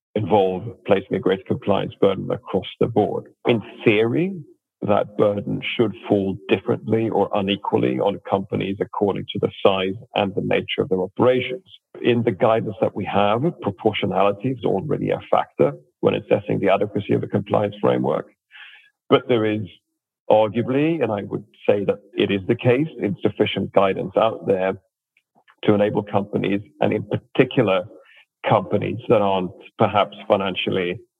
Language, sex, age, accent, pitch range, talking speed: English, male, 40-59, British, 95-120 Hz, 150 wpm